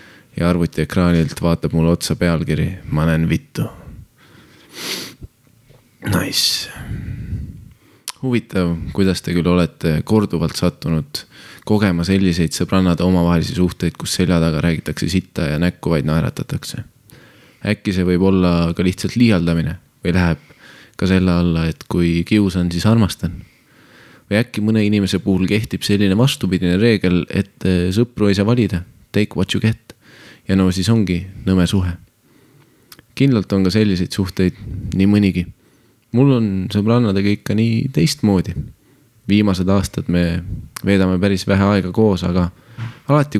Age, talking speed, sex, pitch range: 20-39, 130 wpm, male, 85-105 Hz